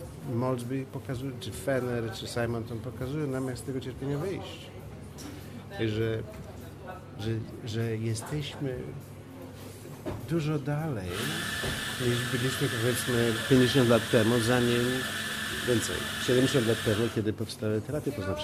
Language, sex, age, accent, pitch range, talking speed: Polish, male, 50-69, native, 110-130 Hz, 110 wpm